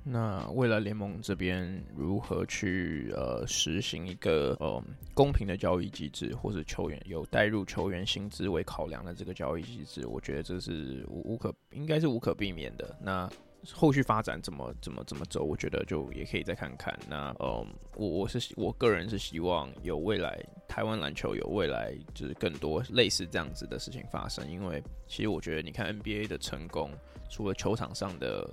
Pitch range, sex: 85-110 Hz, male